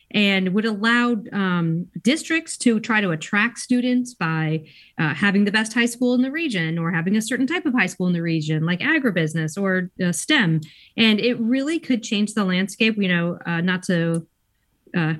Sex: female